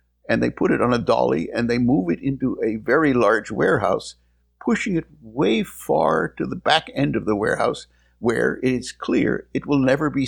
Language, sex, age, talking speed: English, male, 60-79, 200 wpm